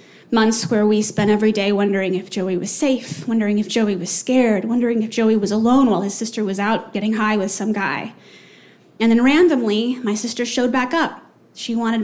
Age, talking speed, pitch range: 20-39, 205 wpm, 200-230 Hz